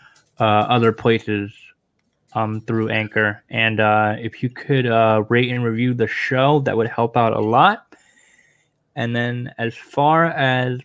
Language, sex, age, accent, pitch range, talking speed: English, male, 10-29, American, 110-130 Hz, 155 wpm